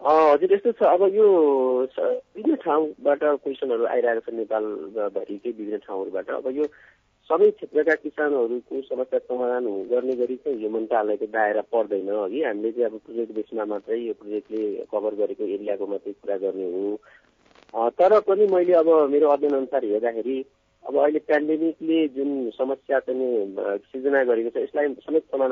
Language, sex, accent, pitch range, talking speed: English, male, Indian, 110-150 Hz, 45 wpm